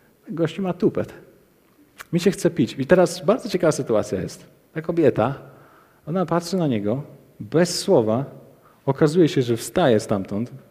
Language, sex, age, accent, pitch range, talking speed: Polish, male, 40-59, native, 120-175 Hz, 145 wpm